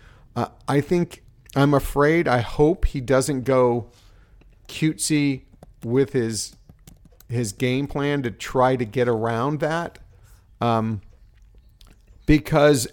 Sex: male